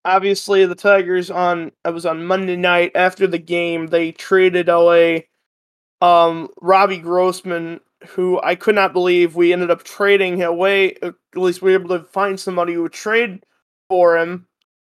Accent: American